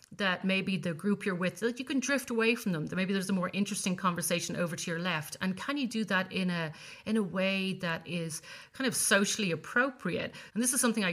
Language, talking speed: English, 245 wpm